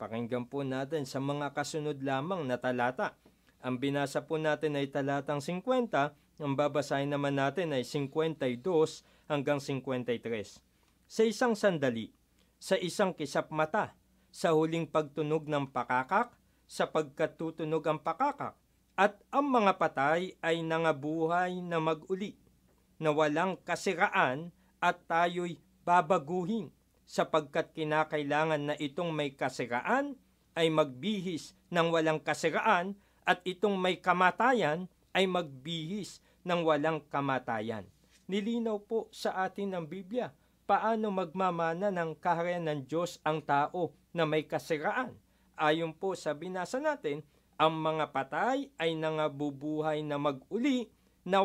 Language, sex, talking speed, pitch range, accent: Filipino, male, 120 wpm, 150-185 Hz, native